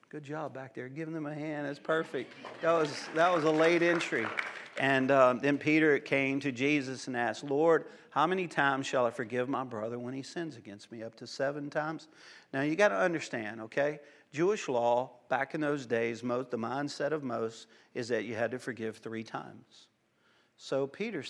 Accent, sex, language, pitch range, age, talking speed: American, male, English, 120-155 Hz, 50-69, 200 wpm